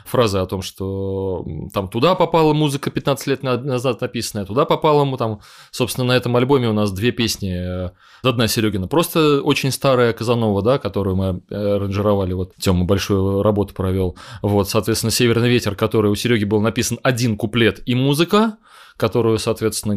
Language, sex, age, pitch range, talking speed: Russian, male, 20-39, 100-135 Hz, 160 wpm